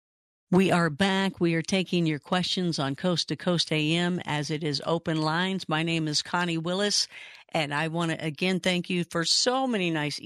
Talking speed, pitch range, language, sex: 200 wpm, 160-180 Hz, English, female